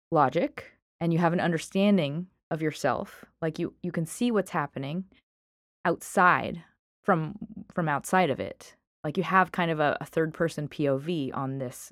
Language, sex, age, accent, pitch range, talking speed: English, female, 20-39, American, 150-190 Hz, 165 wpm